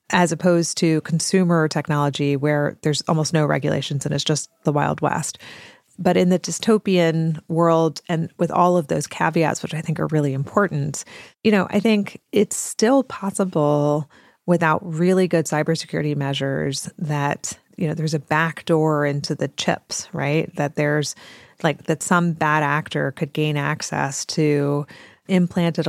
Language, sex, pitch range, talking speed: English, female, 150-175 Hz, 155 wpm